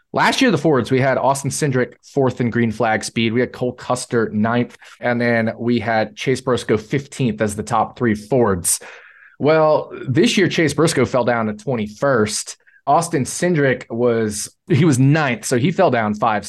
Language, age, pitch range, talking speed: English, 20-39, 115-150 Hz, 180 wpm